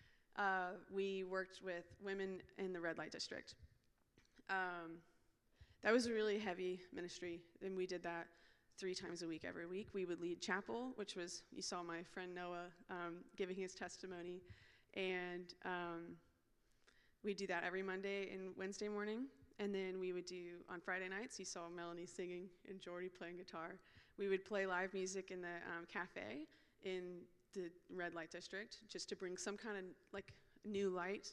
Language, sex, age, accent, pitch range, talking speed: English, female, 20-39, American, 175-195 Hz, 175 wpm